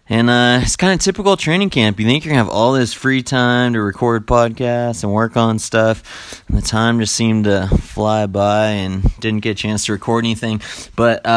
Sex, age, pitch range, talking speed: male, 20-39, 100-115 Hz, 220 wpm